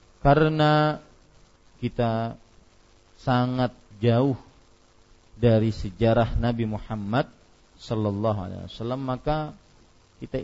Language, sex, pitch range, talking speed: Malay, male, 95-125 Hz, 75 wpm